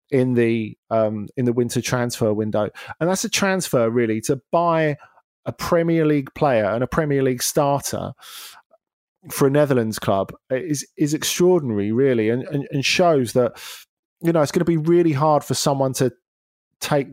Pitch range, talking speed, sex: 120-150 Hz, 170 wpm, male